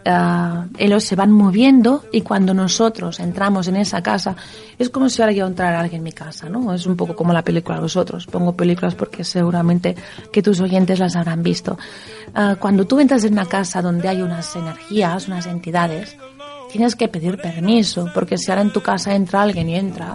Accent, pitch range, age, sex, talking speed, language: Spanish, 175-220 Hz, 30-49, female, 205 wpm, Spanish